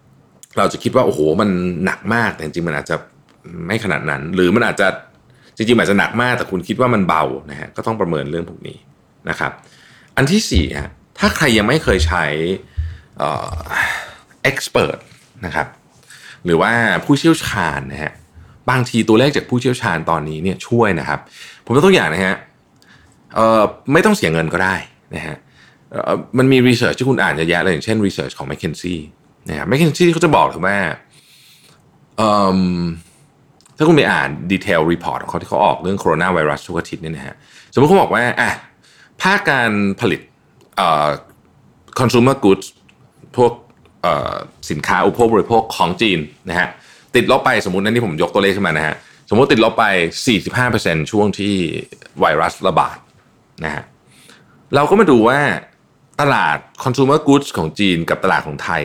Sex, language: male, Thai